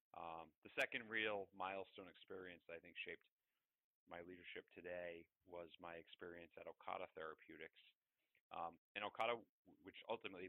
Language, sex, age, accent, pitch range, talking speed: English, male, 30-49, American, 85-100 Hz, 135 wpm